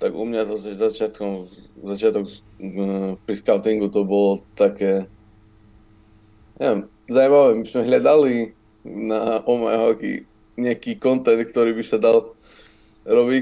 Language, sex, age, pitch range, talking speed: Slovak, male, 20-39, 105-115 Hz, 110 wpm